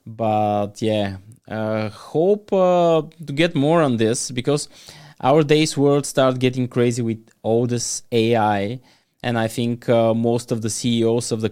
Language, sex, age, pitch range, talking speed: English, male, 20-39, 110-120 Hz, 165 wpm